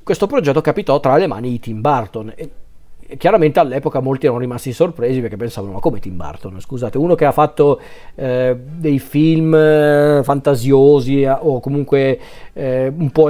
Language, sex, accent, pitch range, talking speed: Italian, male, native, 125-145 Hz, 165 wpm